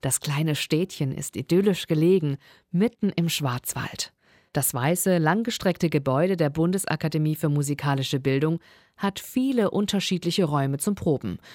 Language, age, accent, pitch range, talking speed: German, 50-69, German, 140-185 Hz, 125 wpm